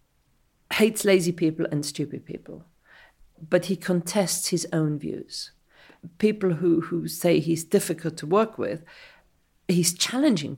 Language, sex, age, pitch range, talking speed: English, female, 40-59, 150-175 Hz, 130 wpm